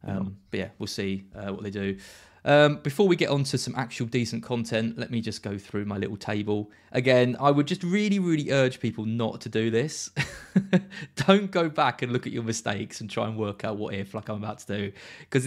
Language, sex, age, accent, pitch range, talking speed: English, male, 20-39, British, 100-130 Hz, 235 wpm